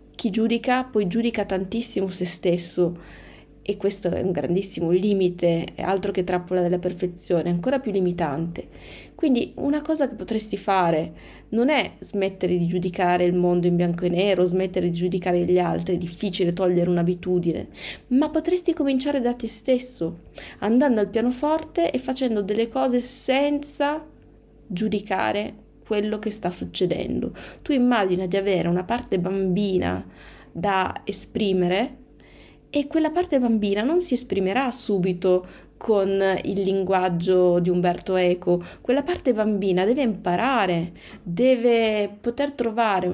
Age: 30-49